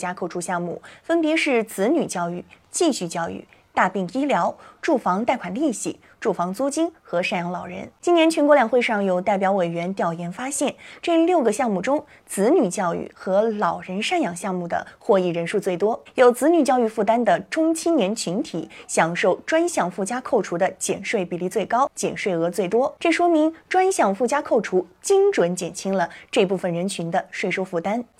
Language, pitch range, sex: Chinese, 185-300 Hz, female